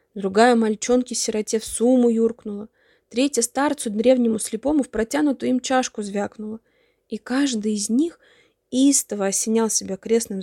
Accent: native